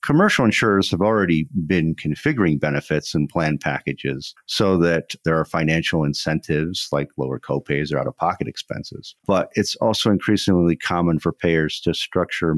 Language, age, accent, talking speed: English, 50-69, American, 150 wpm